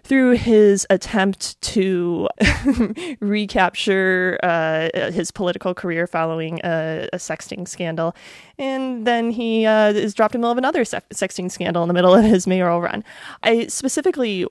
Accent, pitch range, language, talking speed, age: American, 175-210 Hz, English, 155 wpm, 30-49